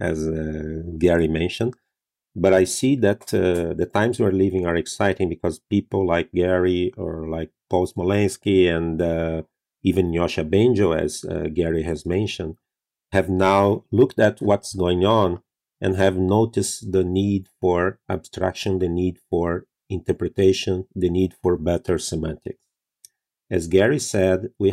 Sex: male